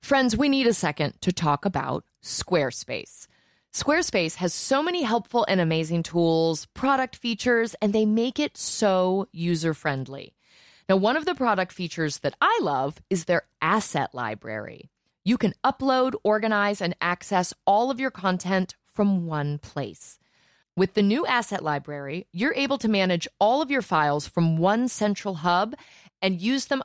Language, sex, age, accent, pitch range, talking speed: English, female, 30-49, American, 165-230 Hz, 160 wpm